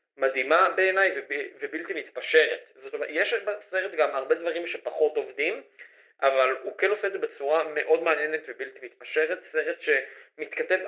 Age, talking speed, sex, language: 30-49, 145 wpm, male, Hebrew